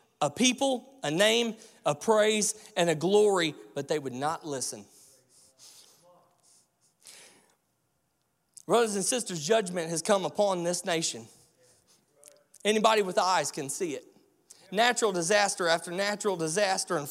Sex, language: male, English